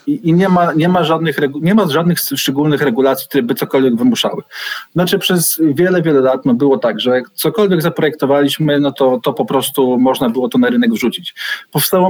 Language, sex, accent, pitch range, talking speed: Polish, male, native, 140-175 Hz, 165 wpm